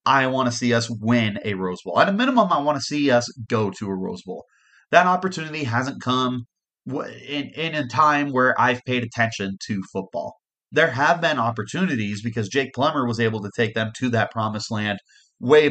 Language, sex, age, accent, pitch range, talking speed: English, male, 30-49, American, 110-135 Hz, 205 wpm